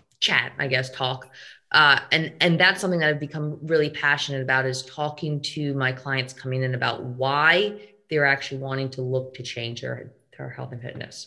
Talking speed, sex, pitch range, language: 190 wpm, female, 130-150 Hz, English